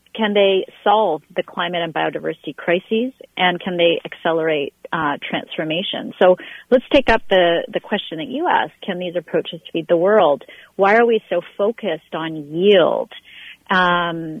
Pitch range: 170-205 Hz